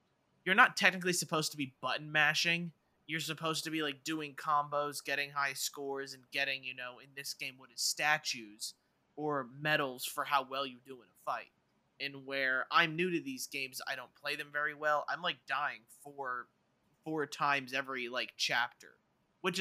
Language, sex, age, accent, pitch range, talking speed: English, male, 20-39, American, 135-150 Hz, 185 wpm